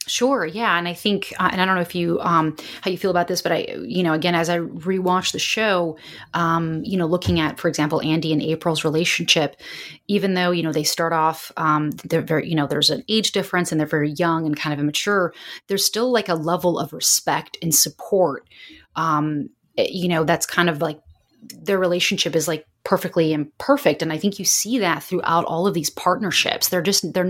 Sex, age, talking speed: female, 30-49, 220 wpm